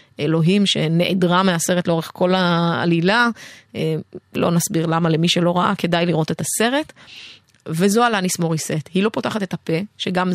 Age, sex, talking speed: 30-49, female, 145 wpm